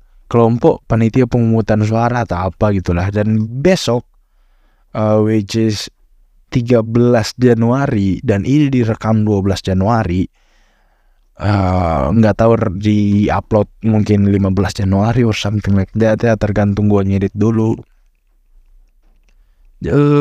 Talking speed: 110 wpm